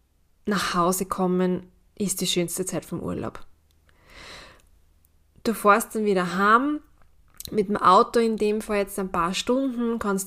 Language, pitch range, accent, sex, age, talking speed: German, 180-210 Hz, German, female, 20-39, 145 wpm